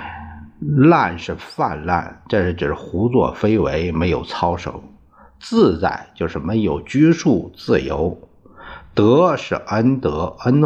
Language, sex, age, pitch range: Chinese, male, 50-69, 75-125 Hz